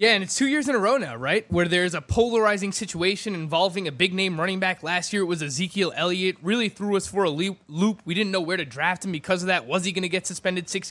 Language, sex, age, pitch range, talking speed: English, male, 20-39, 160-205 Hz, 270 wpm